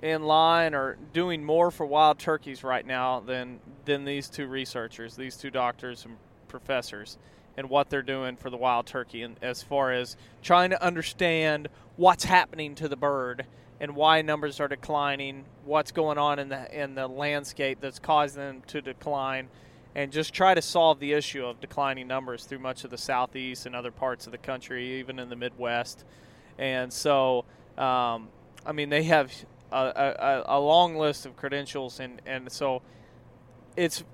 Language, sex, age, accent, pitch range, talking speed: English, male, 30-49, American, 125-155 Hz, 180 wpm